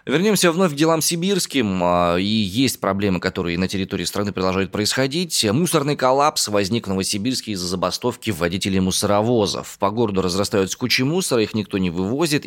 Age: 20-39